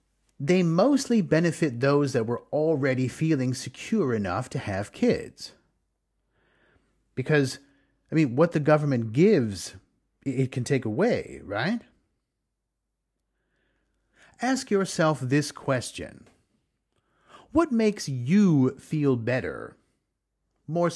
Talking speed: 100 wpm